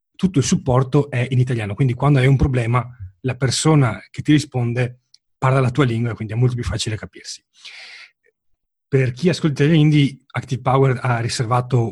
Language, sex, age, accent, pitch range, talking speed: Italian, male, 30-49, native, 120-145 Hz, 175 wpm